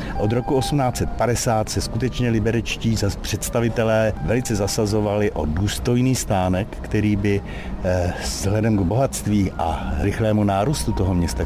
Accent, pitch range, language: native, 90-115 Hz, Czech